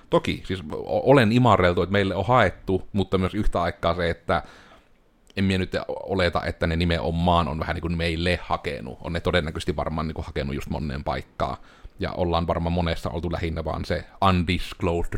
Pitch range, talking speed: 80-95 Hz, 180 wpm